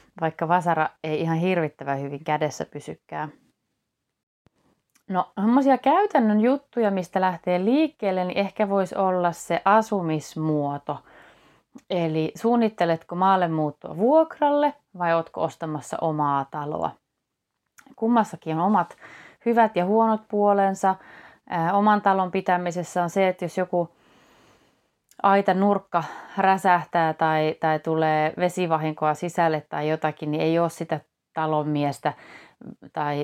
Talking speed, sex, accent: 110 wpm, female, native